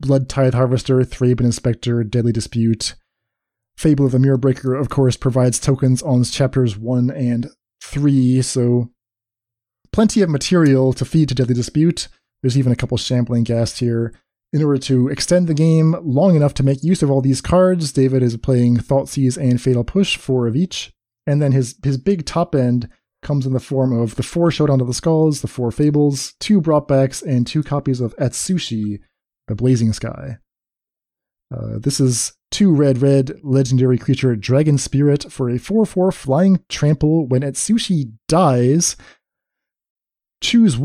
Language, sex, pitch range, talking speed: English, male, 125-150 Hz, 165 wpm